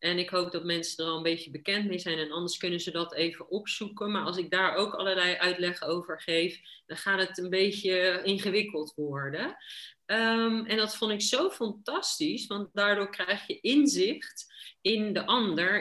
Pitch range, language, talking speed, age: 180-220 Hz, Dutch, 185 wpm, 40-59